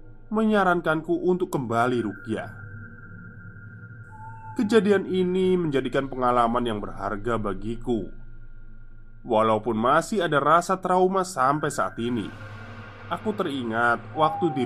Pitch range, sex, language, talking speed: 105-125 Hz, male, Indonesian, 95 wpm